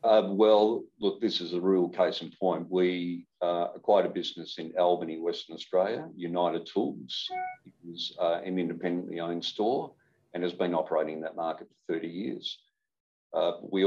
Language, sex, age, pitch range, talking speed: English, male, 50-69, 85-90 Hz, 175 wpm